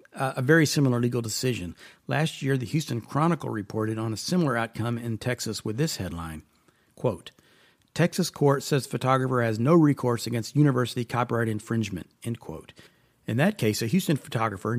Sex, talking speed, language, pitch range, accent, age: male, 165 wpm, English, 110-135 Hz, American, 50-69